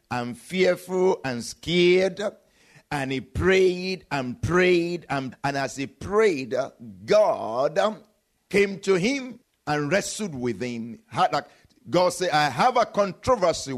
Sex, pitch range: male, 155-215 Hz